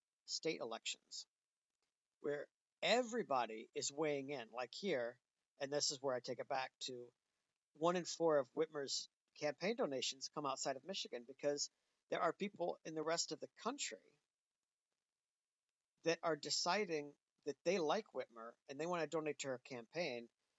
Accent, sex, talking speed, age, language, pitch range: American, male, 155 wpm, 50-69, English, 135-170 Hz